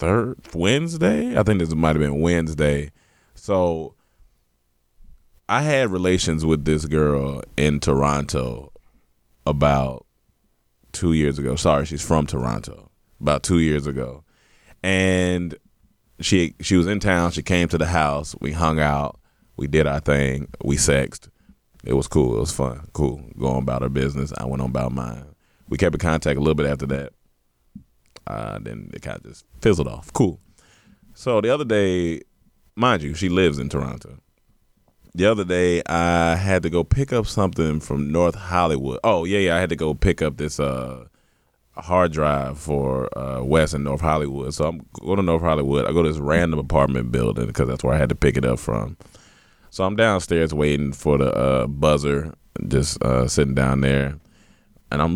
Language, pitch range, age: English, 70-85 Hz, 30-49